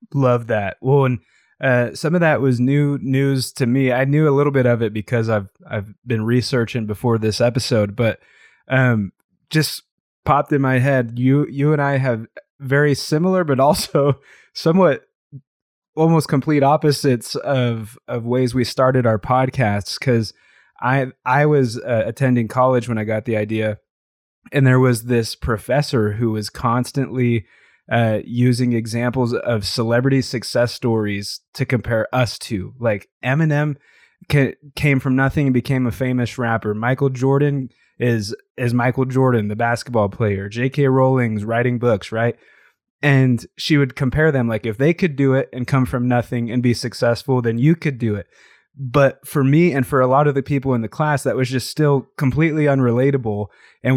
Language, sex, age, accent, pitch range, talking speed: English, male, 20-39, American, 115-140 Hz, 170 wpm